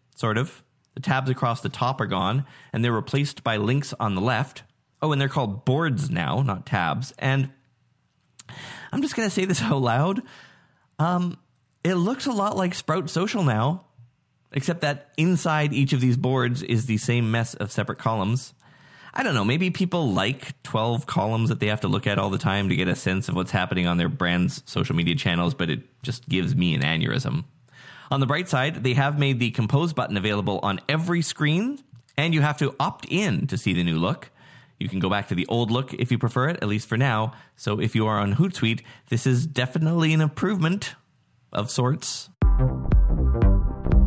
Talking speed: 200 wpm